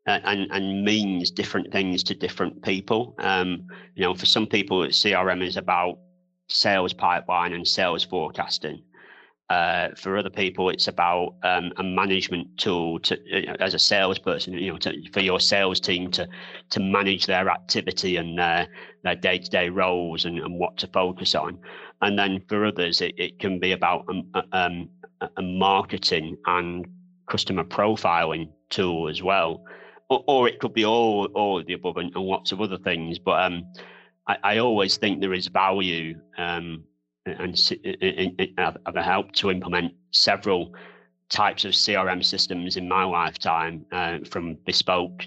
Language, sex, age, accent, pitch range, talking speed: English, male, 30-49, British, 90-100 Hz, 165 wpm